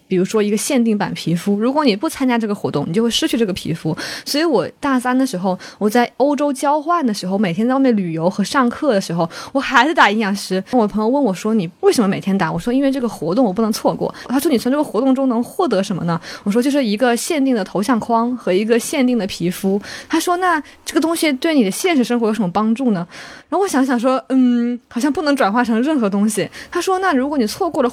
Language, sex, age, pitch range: Chinese, female, 20-39, 205-280 Hz